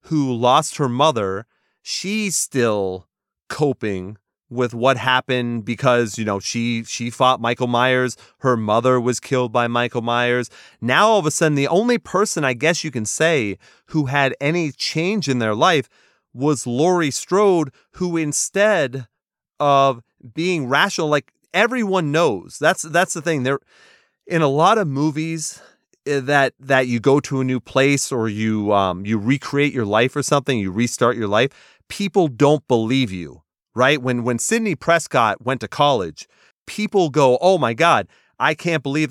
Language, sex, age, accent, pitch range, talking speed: English, male, 30-49, American, 120-160 Hz, 165 wpm